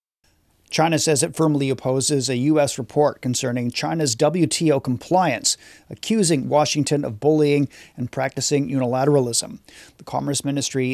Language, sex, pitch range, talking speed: English, male, 135-155 Hz, 120 wpm